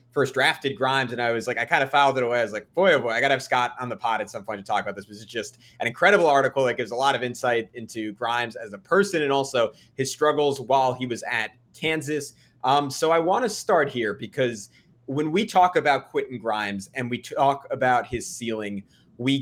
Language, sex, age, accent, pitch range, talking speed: English, male, 30-49, American, 115-150 Hz, 250 wpm